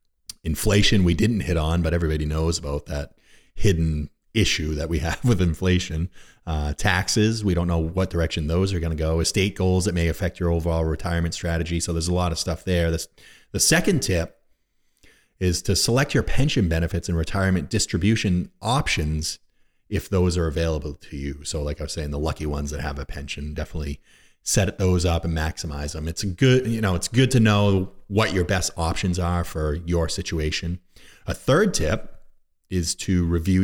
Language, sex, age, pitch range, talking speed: English, male, 30-49, 80-100 Hz, 190 wpm